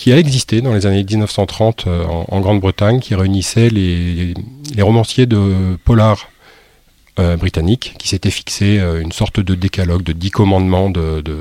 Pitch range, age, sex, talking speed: 90-105 Hz, 40-59, male, 180 wpm